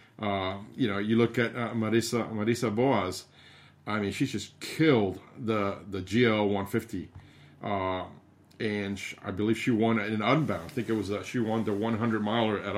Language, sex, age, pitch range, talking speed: English, male, 50-69, 100-120 Hz, 200 wpm